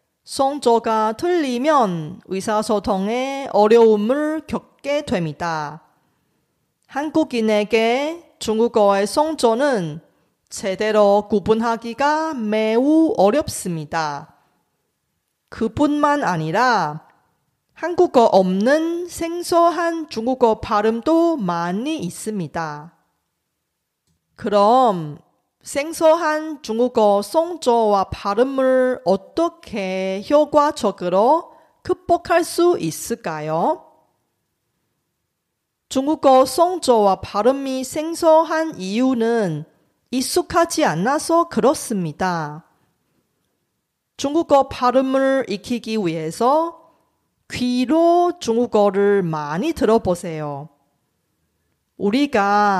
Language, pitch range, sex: Korean, 195-305 Hz, female